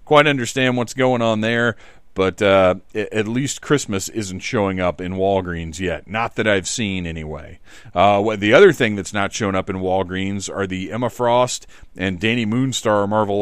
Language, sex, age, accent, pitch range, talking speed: English, male, 40-59, American, 95-125 Hz, 180 wpm